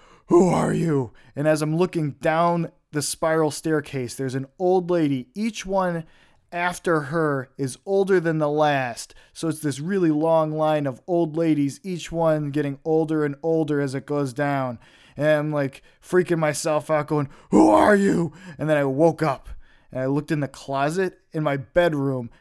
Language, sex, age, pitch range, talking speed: English, male, 20-39, 135-170 Hz, 180 wpm